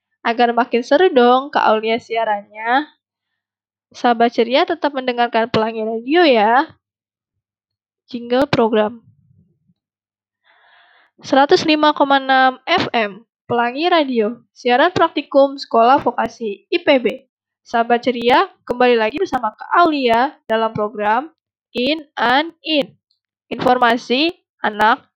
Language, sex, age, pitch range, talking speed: Indonesian, female, 20-39, 235-290 Hz, 90 wpm